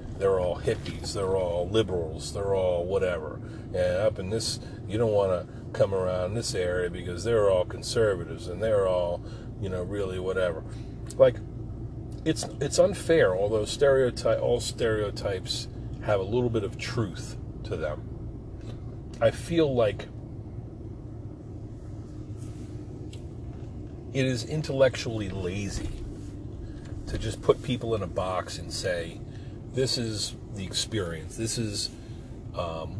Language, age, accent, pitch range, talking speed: English, 40-59, American, 100-115 Hz, 130 wpm